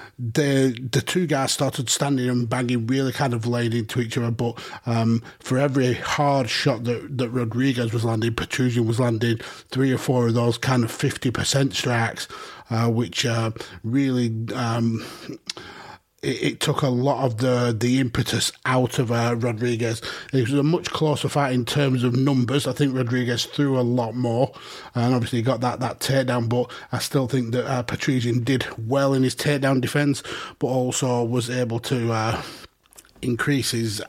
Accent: British